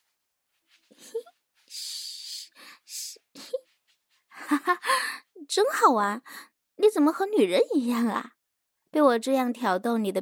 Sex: female